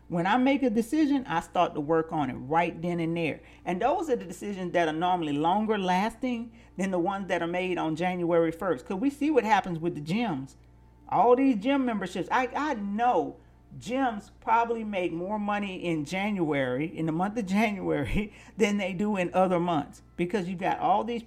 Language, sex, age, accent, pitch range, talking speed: English, male, 40-59, American, 165-220 Hz, 205 wpm